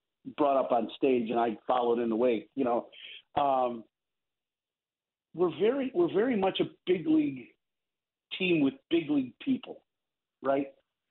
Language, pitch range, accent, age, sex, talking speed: English, 125-170 Hz, American, 50-69, male, 145 wpm